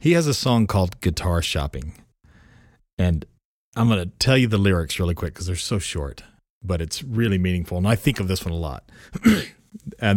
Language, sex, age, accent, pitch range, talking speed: English, male, 40-59, American, 90-120 Hz, 200 wpm